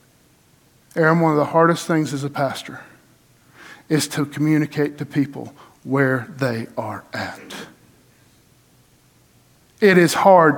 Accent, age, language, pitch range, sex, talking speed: American, 50-69, English, 140-160 Hz, male, 120 wpm